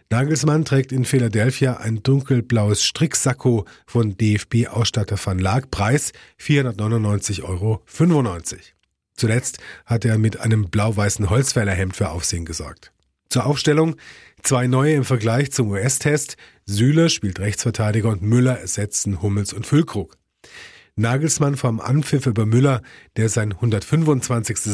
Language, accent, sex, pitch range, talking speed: German, German, male, 105-135 Hz, 120 wpm